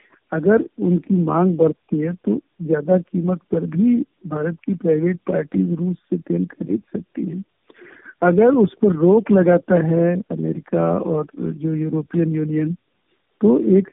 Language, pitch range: Hindi, 160-200 Hz